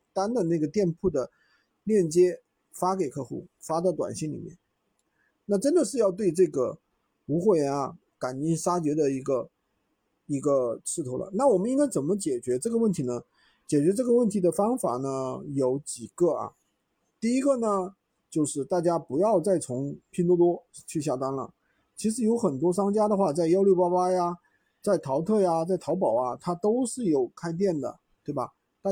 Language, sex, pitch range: Chinese, male, 150-205 Hz